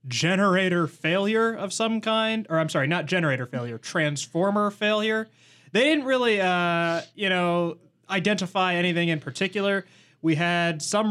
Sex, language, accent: male, English, American